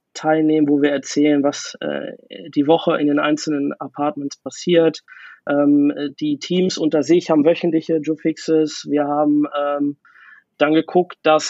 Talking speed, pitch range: 140 wpm, 150-170 Hz